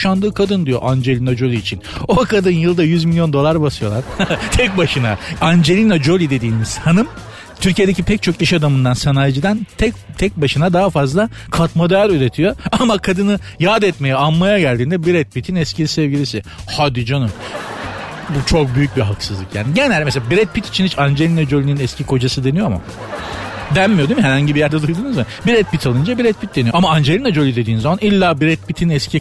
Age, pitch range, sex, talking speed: 50-69, 120-170 Hz, male, 175 wpm